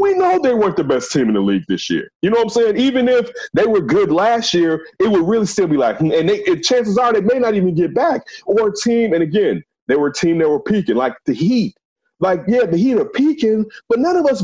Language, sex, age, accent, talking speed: English, male, 30-49, American, 270 wpm